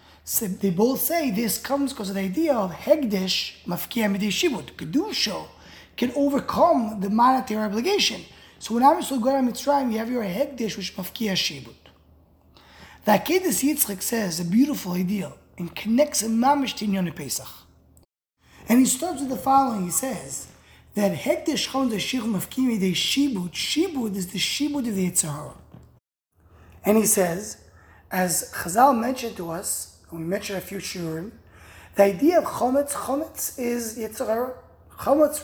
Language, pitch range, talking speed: English, 170-255 Hz, 145 wpm